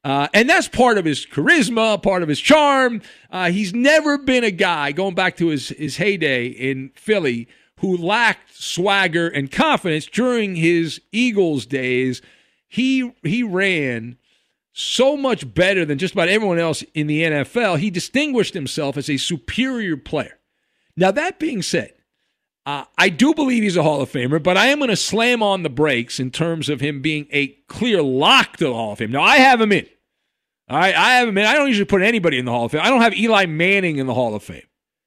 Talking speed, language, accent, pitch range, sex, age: 205 wpm, English, American, 150-225 Hz, male, 50-69